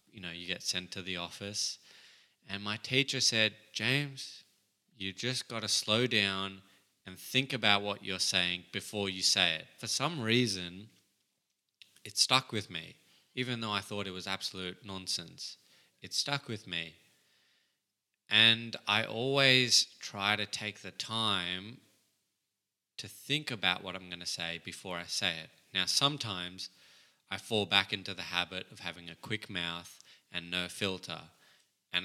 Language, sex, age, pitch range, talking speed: English, male, 20-39, 90-110 Hz, 160 wpm